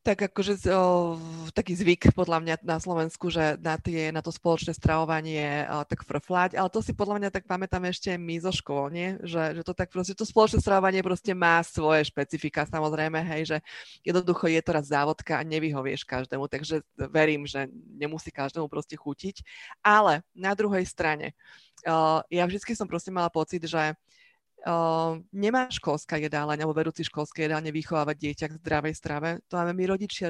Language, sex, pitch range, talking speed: Slovak, female, 145-170 Hz, 175 wpm